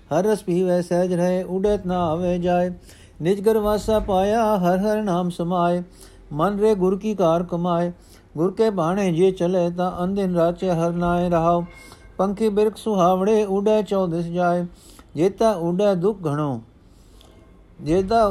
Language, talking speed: Punjabi, 150 wpm